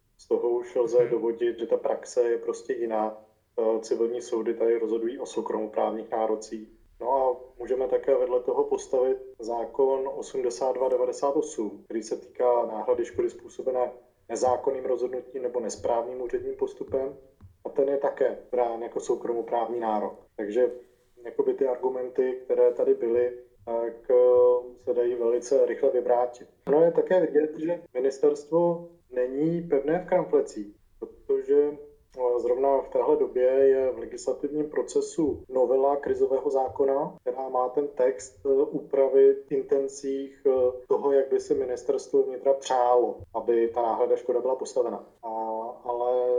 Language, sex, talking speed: Czech, male, 135 wpm